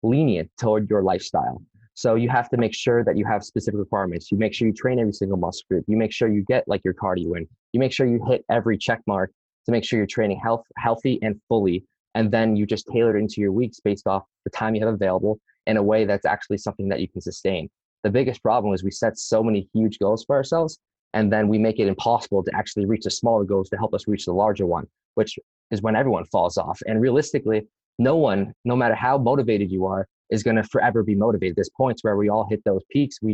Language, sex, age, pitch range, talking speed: English, male, 20-39, 100-120 Hz, 250 wpm